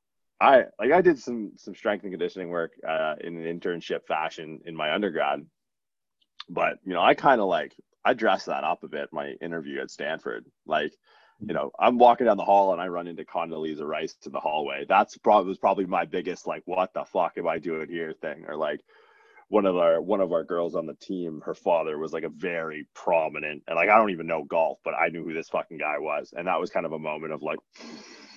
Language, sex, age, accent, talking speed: English, male, 20-39, American, 235 wpm